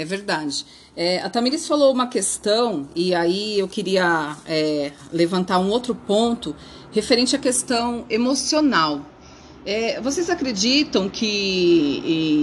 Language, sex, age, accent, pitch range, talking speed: Portuguese, female, 30-49, Brazilian, 180-250 Hz, 125 wpm